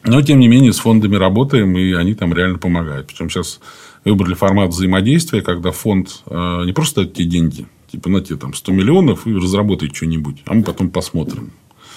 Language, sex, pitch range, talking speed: Russian, male, 85-105 Hz, 185 wpm